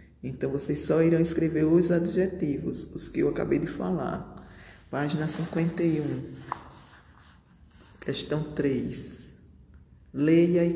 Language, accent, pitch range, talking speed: Portuguese, Brazilian, 140-170 Hz, 105 wpm